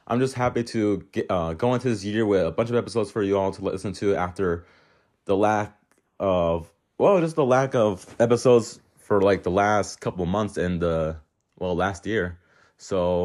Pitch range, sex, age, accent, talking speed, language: 90-115 Hz, male, 30-49, American, 200 wpm, English